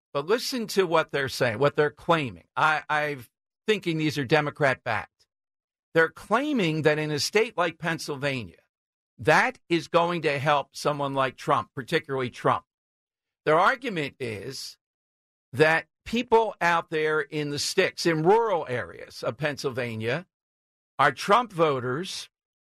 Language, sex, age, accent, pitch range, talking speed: English, male, 50-69, American, 140-170 Hz, 140 wpm